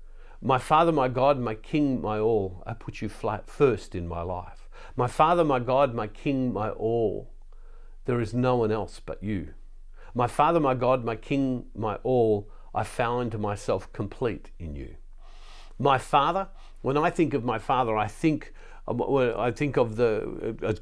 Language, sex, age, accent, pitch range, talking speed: English, male, 50-69, Australian, 105-145 Hz, 175 wpm